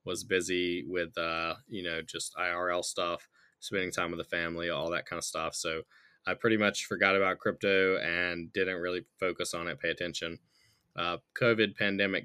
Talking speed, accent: 180 wpm, American